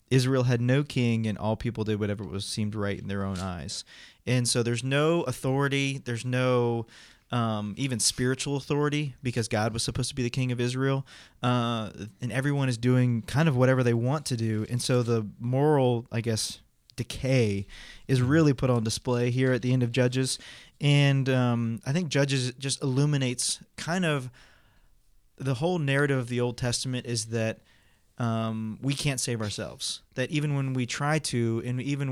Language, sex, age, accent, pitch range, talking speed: English, male, 20-39, American, 115-135 Hz, 185 wpm